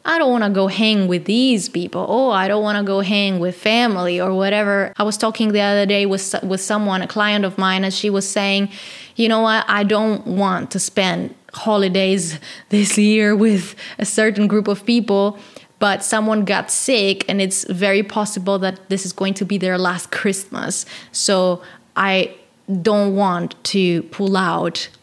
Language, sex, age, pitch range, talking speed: English, female, 20-39, 190-215 Hz, 180 wpm